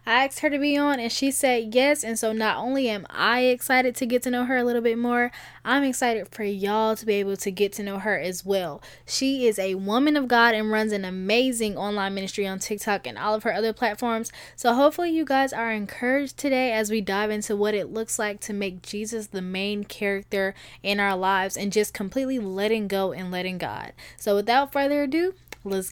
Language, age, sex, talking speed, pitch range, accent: English, 10-29, female, 225 wpm, 200-255 Hz, American